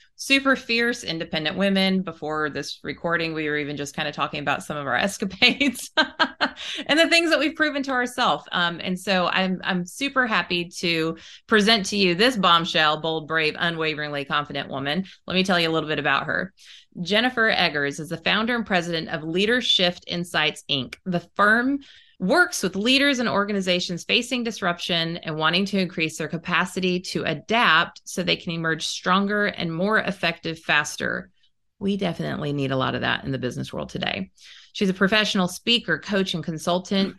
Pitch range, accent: 160-205 Hz, American